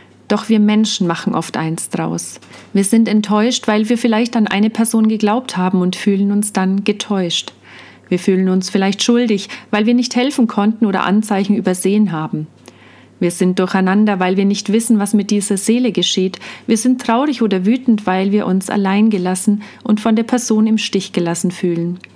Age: 40-59